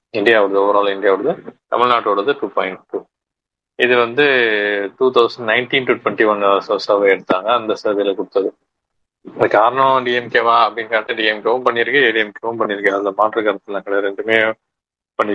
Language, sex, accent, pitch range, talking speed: Tamil, male, native, 100-125 Hz, 135 wpm